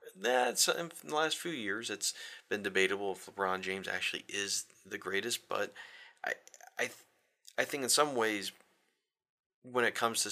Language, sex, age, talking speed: English, male, 30-49, 170 wpm